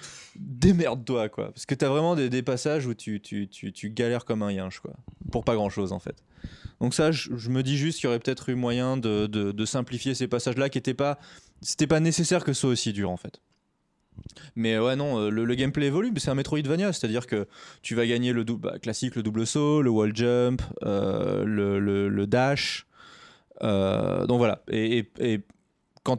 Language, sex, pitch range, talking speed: French, male, 105-130 Hz, 220 wpm